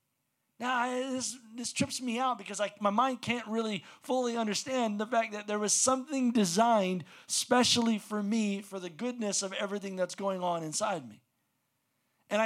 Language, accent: English, American